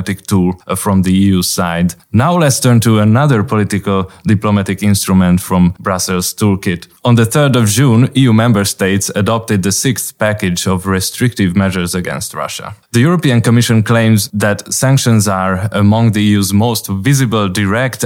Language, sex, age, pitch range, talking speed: Hungarian, male, 20-39, 95-115 Hz, 155 wpm